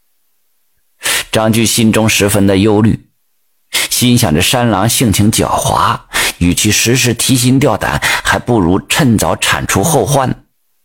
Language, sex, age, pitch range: Chinese, male, 50-69, 105-130 Hz